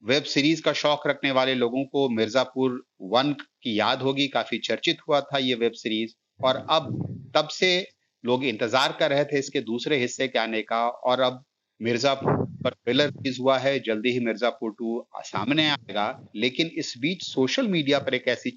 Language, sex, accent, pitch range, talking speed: Hindi, male, native, 120-155 Hz, 185 wpm